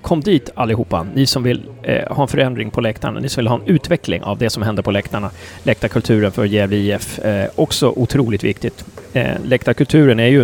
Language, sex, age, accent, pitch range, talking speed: Swedish, male, 30-49, native, 110-130 Hz, 205 wpm